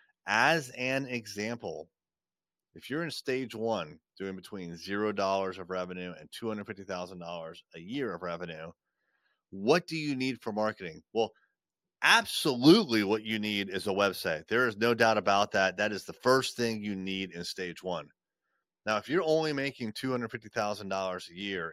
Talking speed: 155 wpm